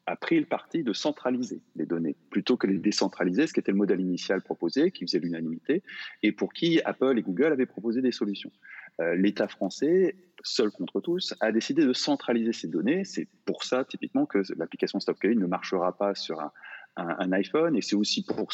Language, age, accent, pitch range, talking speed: French, 30-49, French, 100-145 Hz, 205 wpm